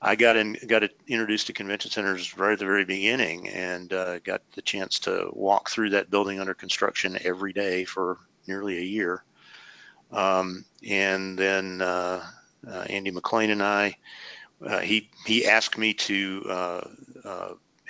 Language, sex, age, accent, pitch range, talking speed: English, male, 50-69, American, 95-105 Hz, 160 wpm